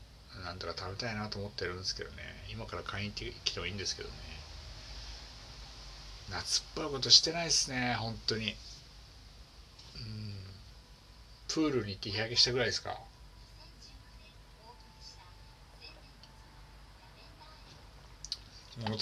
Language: Japanese